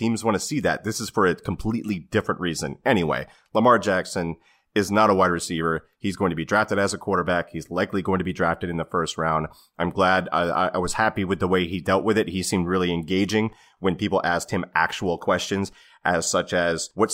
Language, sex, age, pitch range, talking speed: English, male, 30-49, 85-105 Hz, 230 wpm